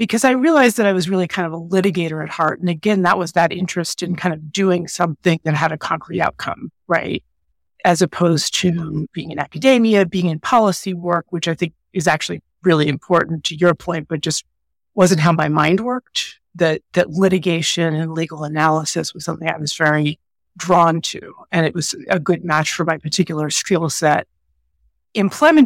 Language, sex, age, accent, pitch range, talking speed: English, female, 30-49, American, 160-185 Hz, 190 wpm